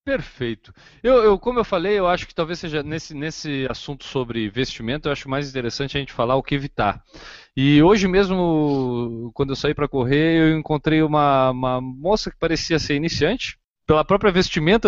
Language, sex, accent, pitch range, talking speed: Portuguese, male, Brazilian, 130-175 Hz, 180 wpm